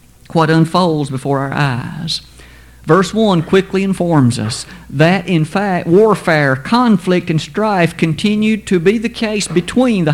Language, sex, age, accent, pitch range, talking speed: English, male, 50-69, American, 145-195 Hz, 140 wpm